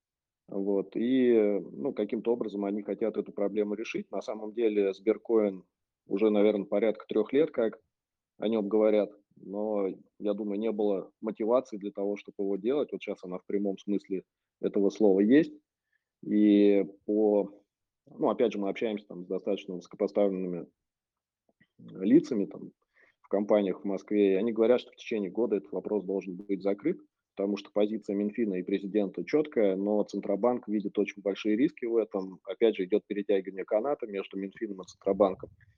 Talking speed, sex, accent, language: 160 wpm, male, native, Russian